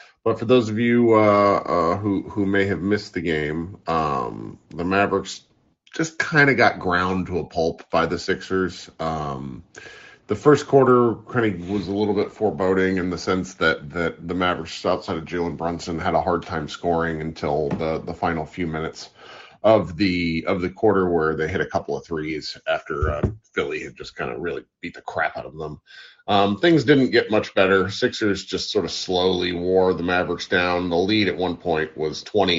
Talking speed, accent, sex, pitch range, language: 200 wpm, American, male, 80-105 Hz, English